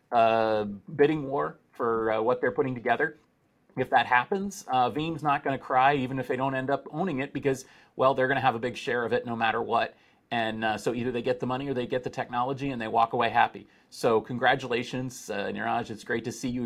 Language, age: English, 30-49